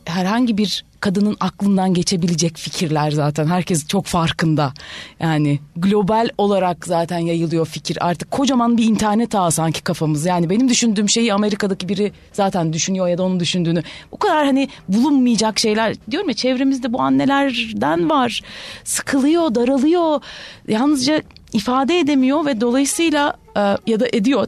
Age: 30-49